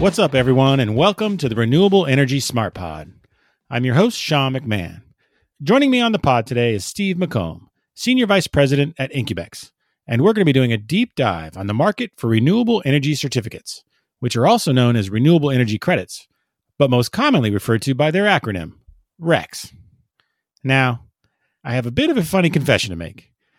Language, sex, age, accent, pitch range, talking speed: English, male, 40-59, American, 115-165 Hz, 190 wpm